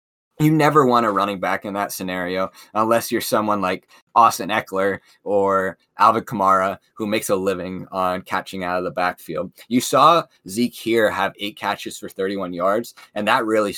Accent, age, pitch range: American, 20-39, 95-115 Hz